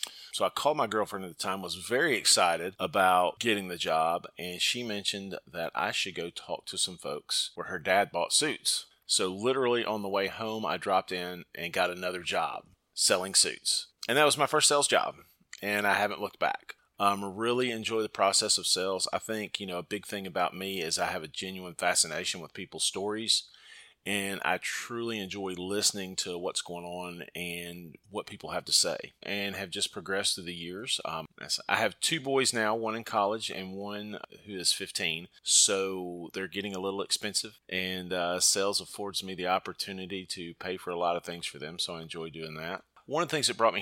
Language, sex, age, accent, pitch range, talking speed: English, male, 30-49, American, 90-105 Hz, 210 wpm